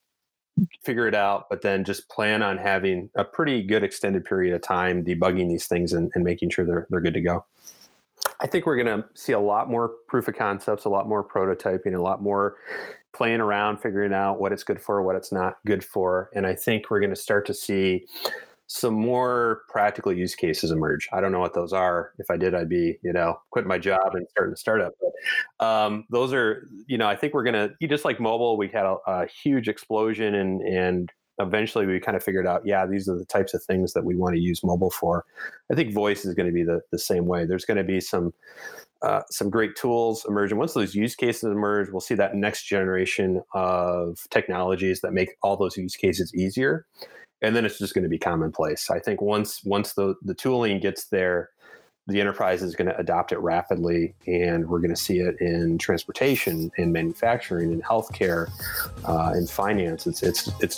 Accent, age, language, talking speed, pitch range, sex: American, 30-49, English, 215 wpm, 90-105 Hz, male